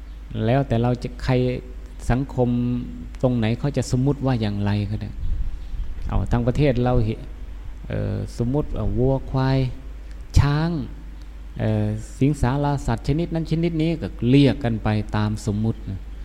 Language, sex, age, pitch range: Thai, male, 20-39, 95-130 Hz